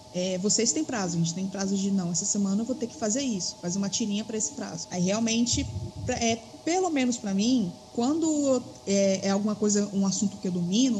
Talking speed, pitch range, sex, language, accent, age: 225 wpm, 190-255 Hz, female, Portuguese, Brazilian, 20-39